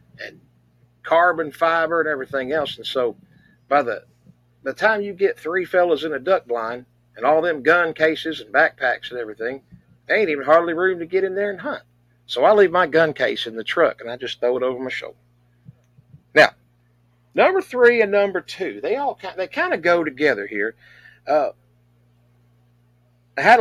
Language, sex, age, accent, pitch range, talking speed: English, male, 50-69, American, 120-170 Hz, 185 wpm